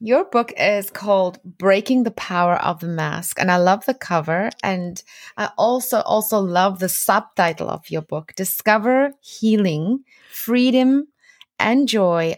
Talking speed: 145 wpm